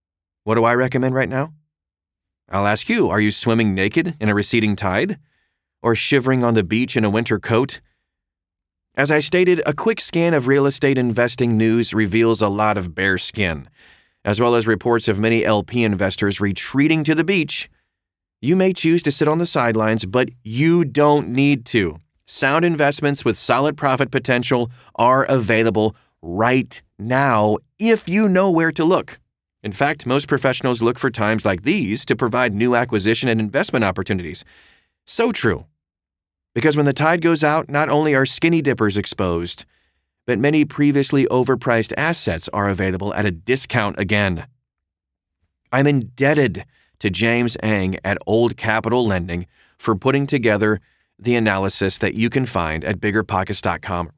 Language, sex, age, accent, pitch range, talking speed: English, male, 30-49, American, 100-140 Hz, 160 wpm